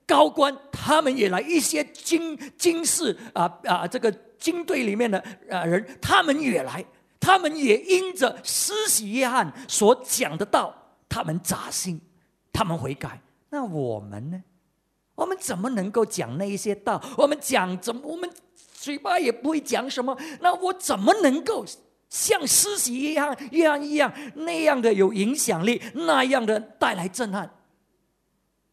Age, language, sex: 50-69, English, male